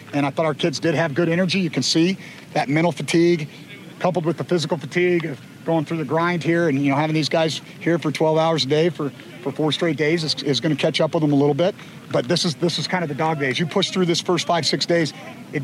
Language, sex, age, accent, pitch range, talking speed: English, male, 40-59, American, 145-170 Hz, 280 wpm